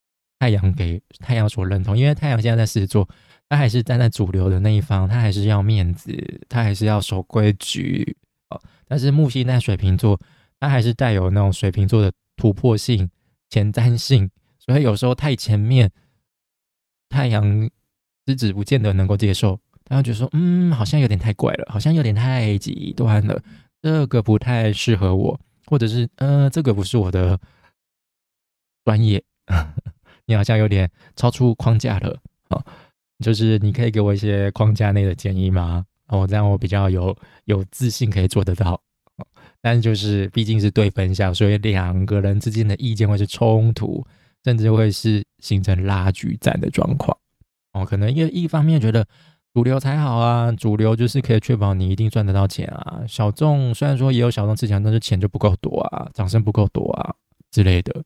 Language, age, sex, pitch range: Chinese, 20-39, male, 100-125 Hz